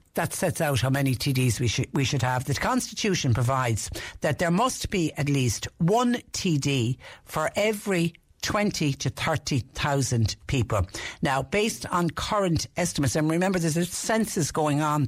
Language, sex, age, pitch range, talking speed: English, female, 60-79, 125-160 Hz, 165 wpm